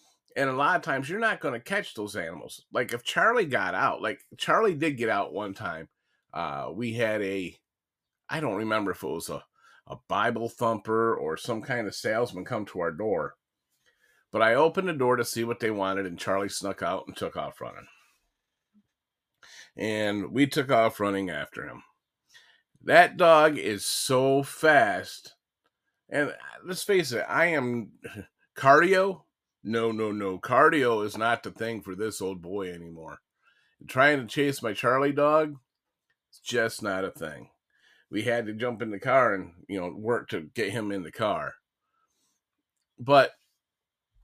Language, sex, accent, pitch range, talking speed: English, male, American, 105-140 Hz, 170 wpm